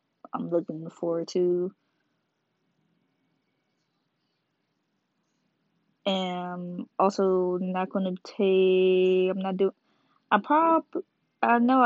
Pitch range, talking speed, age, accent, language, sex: 175-200 Hz, 85 wpm, 20-39, American, English, female